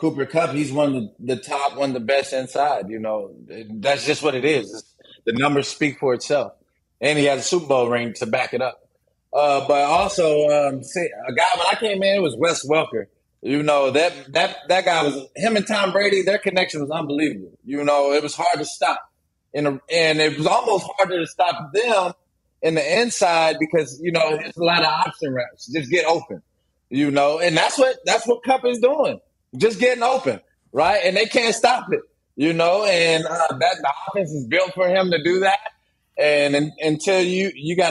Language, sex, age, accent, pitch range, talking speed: English, male, 20-39, American, 145-195 Hz, 215 wpm